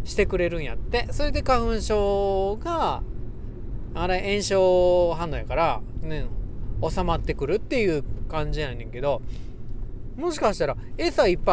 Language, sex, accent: Japanese, male, native